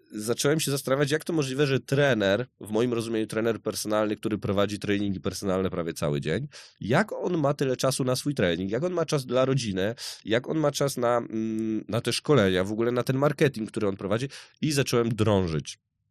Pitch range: 105-135 Hz